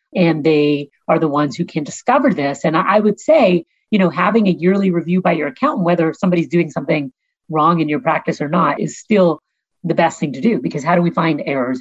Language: English